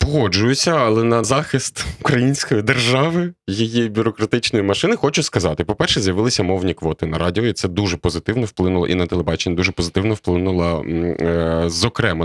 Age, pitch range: 20-39, 90-120 Hz